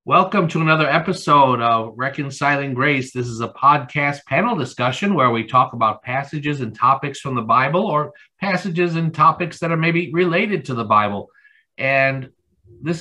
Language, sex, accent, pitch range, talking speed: English, male, American, 125-165 Hz, 165 wpm